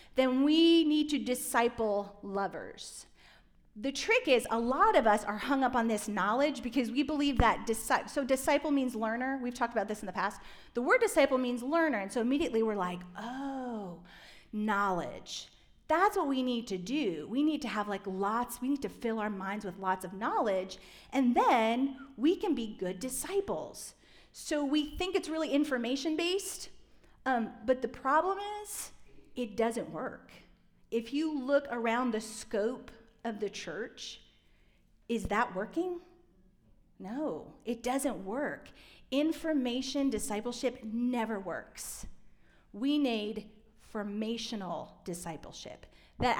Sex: female